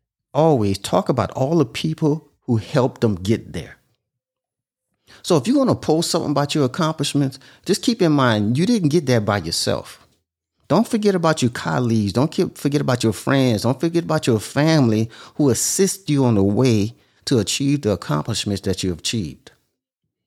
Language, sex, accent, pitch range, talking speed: English, male, American, 115-170 Hz, 180 wpm